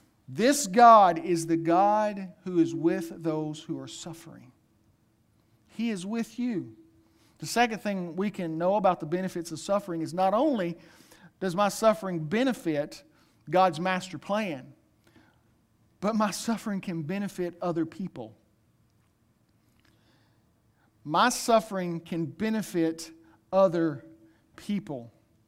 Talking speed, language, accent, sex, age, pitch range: 120 wpm, English, American, male, 50-69, 155-215 Hz